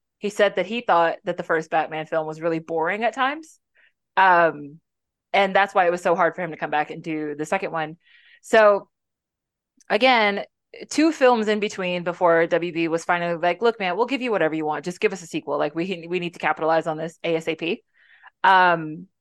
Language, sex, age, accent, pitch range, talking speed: English, female, 20-39, American, 160-205 Hz, 210 wpm